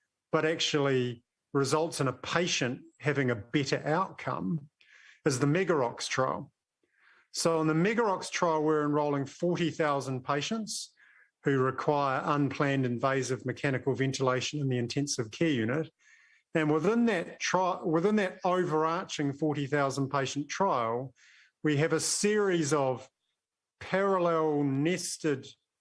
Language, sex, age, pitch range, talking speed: English, male, 50-69, 135-165 Hz, 120 wpm